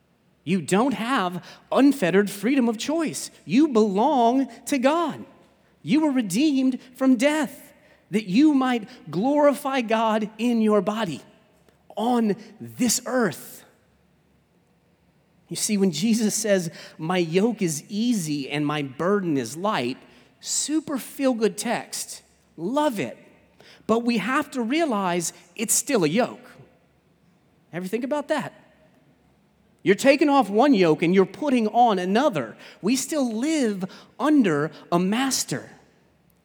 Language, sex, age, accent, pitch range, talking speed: English, male, 30-49, American, 175-260 Hz, 125 wpm